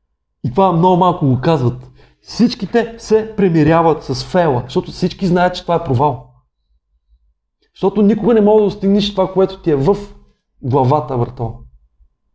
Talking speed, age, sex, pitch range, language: 150 wpm, 30-49, male, 135-205 Hz, Bulgarian